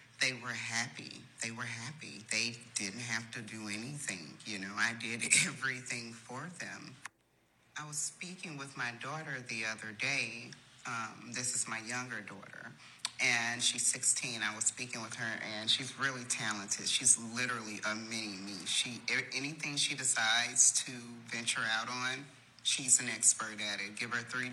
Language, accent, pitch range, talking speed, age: English, American, 110-130 Hz, 160 wpm, 30-49